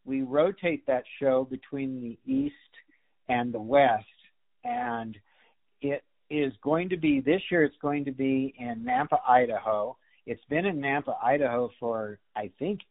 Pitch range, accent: 110-135 Hz, American